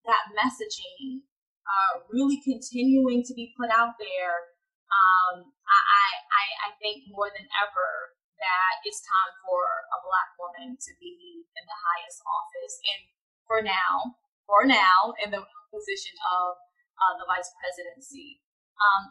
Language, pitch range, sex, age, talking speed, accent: English, 215-285 Hz, female, 20-39, 140 wpm, American